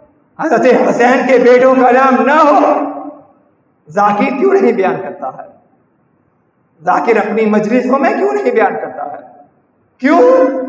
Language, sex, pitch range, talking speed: Urdu, male, 225-265 Hz, 140 wpm